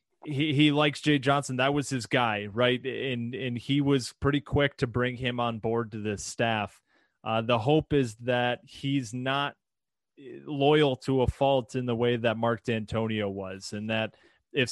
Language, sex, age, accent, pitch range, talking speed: English, male, 20-39, American, 115-135 Hz, 185 wpm